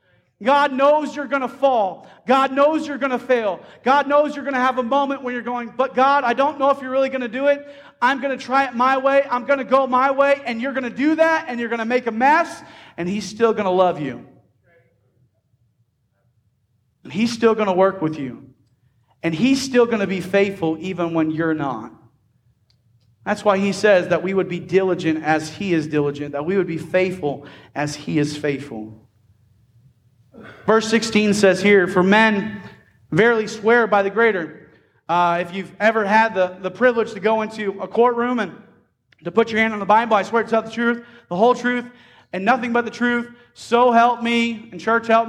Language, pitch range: English, 165-240 Hz